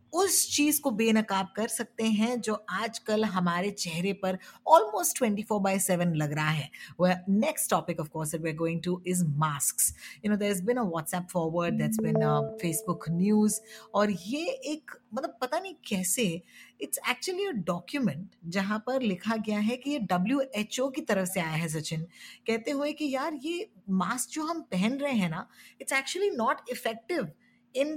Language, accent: Hindi, native